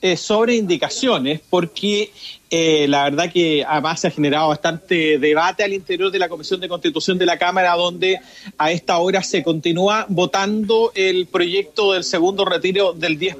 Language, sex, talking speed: Spanish, male, 165 wpm